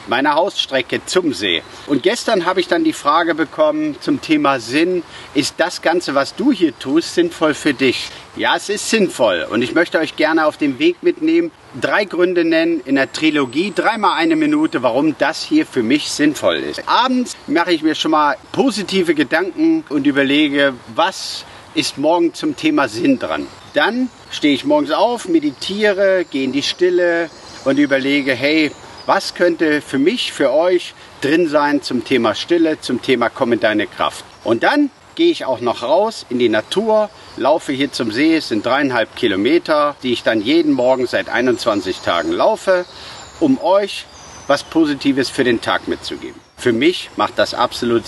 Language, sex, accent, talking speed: German, male, German, 175 wpm